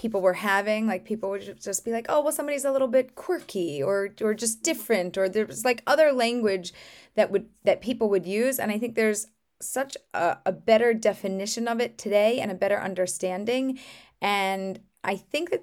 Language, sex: English, female